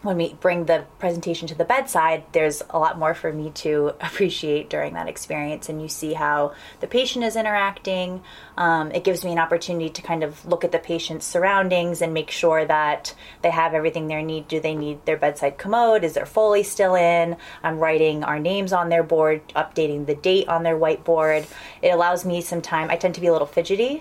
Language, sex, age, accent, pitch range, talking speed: English, female, 20-39, American, 160-185 Hz, 215 wpm